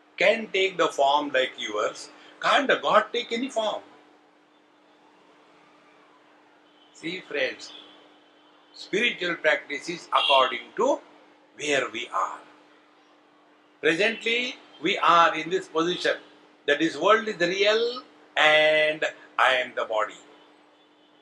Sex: male